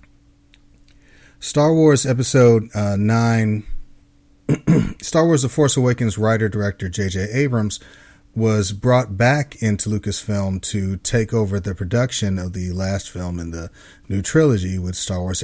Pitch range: 95-125 Hz